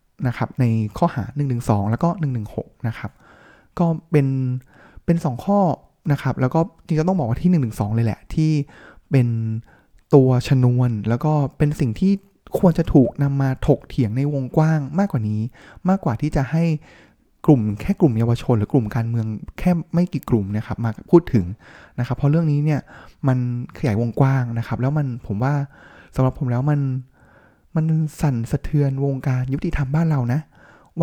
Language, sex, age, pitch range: Thai, male, 20-39, 120-150 Hz